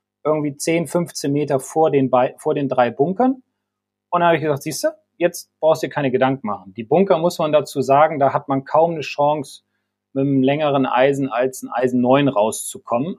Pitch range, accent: 130-165 Hz, German